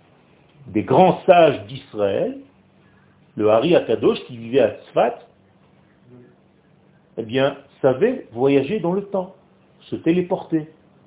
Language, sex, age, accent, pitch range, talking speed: French, male, 50-69, French, 135-190 Hz, 110 wpm